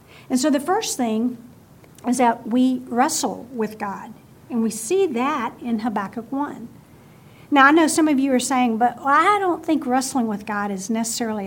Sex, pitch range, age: female, 230-300 Hz, 50-69